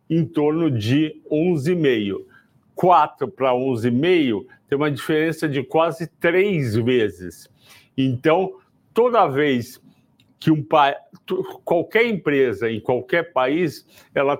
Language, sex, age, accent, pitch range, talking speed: Portuguese, male, 60-79, Brazilian, 135-185 Hz, 110 wpm